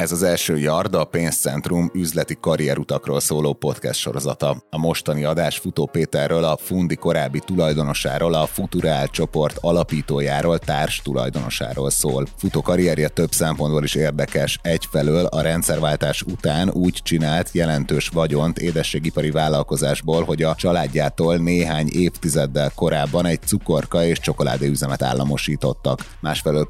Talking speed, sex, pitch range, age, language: 125 wpm, male, 75-85 Hz, 30-49, Hungarian